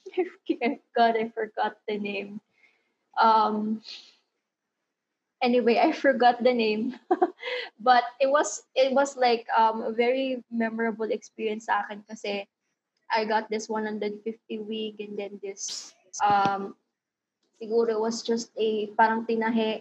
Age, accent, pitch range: 20-39, Filipino, 215-240 Hz